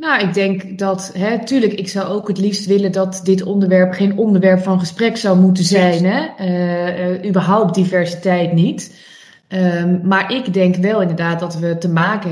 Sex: female